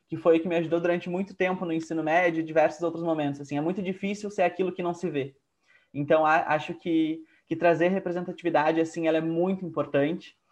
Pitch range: 155-170 Hz